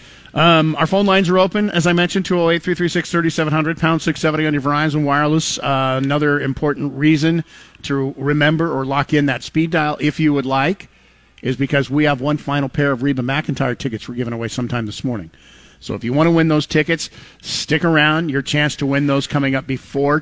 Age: 50-69